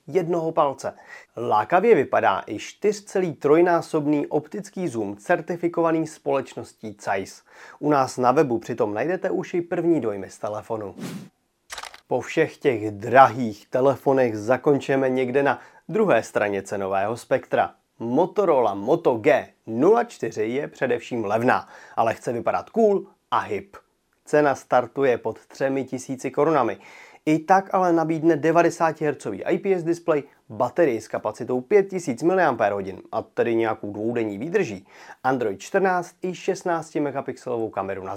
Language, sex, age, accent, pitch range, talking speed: Czech, male, 30-49, native, 120-170 Hz, 125 wpm